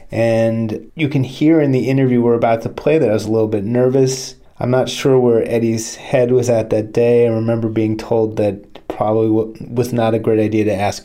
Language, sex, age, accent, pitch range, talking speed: English, male, 30-49, American, 110-130 Hz, 225 wpm